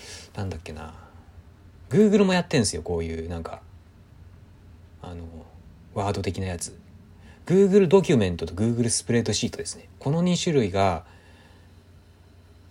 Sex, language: male, Japanese